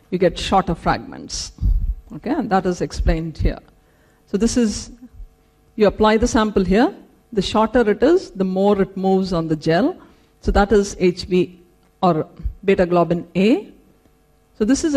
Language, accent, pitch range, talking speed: English, Indian, 170-230 Hz, 160 wpm